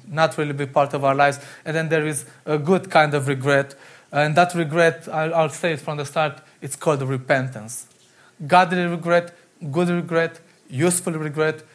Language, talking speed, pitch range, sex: English, 180 wpm, 135-165 Hz, male